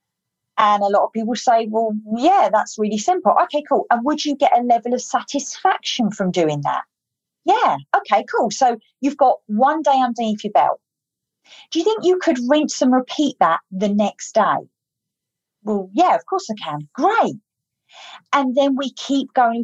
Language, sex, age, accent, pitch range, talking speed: English, female, 40-59, British, 210-275 Hz, 180 wpm